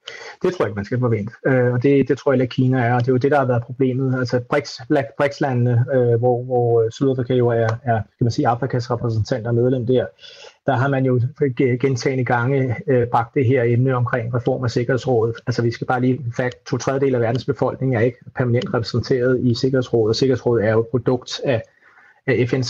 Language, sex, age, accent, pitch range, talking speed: Danish, male, 30-49, native, 125-145 Hz, 205 wpm